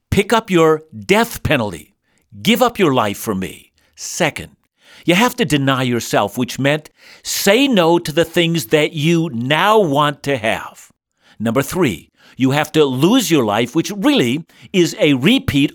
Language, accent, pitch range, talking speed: English, American, 135-195 Hz, 165 wpm